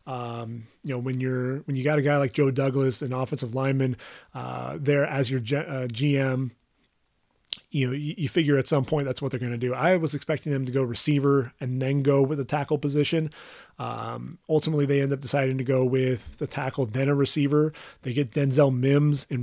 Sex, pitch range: male, 130-145 Hz